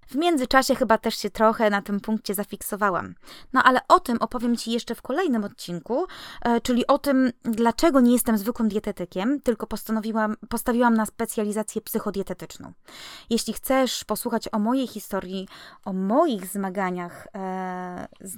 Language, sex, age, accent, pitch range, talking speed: Polish, female, 20-39, native, 200-255 Hz, 140 wpm